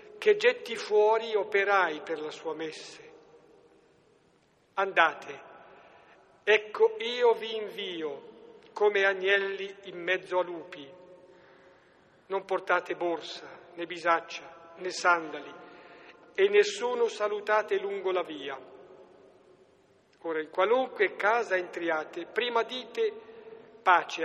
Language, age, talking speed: Italian, 50-69, 100 wpm